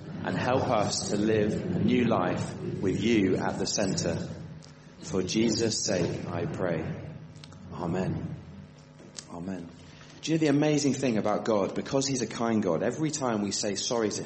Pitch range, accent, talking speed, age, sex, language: 110-155 Hz, British, 165 wpm, 30-49, male, English